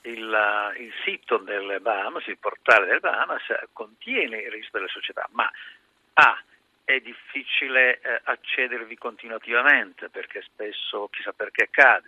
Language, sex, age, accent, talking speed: Italian, male, 50-69, native, 130 wpm